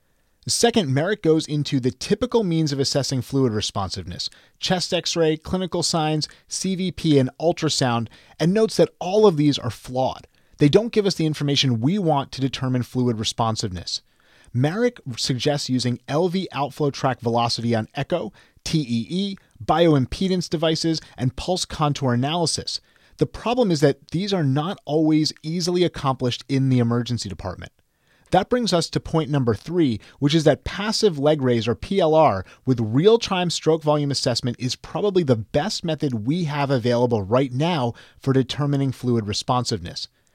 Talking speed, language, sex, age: 150 wpm, English, male, 30-49